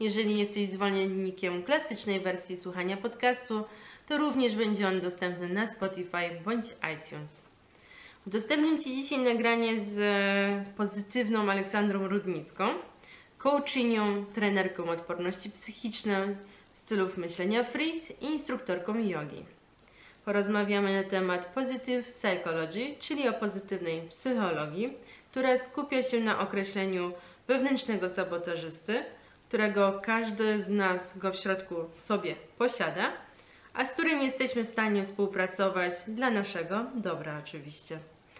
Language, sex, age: Polish, female, 20-39